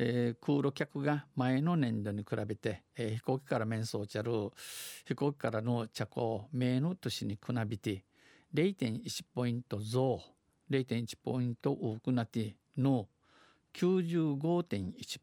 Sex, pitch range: male, 115-145 Hz